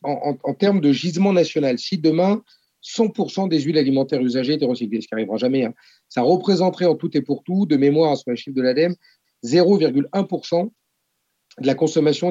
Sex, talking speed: male, 190 wpm